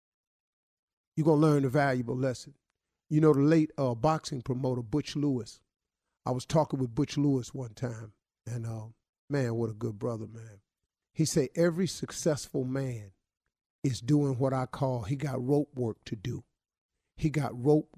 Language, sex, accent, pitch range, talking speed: English, male, American, 125-150 Hz, 165 wpm